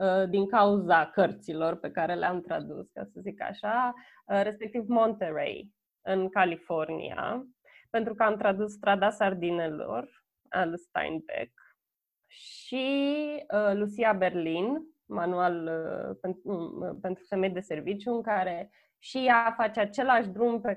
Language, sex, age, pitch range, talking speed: Romanian, female, 20-39, 185-230 Hz, 115 wpm